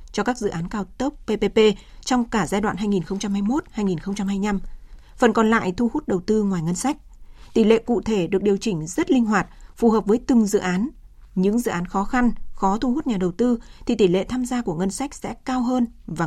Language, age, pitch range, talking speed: Vietnamese, 20-39, 195-235 Hz, 230 wpm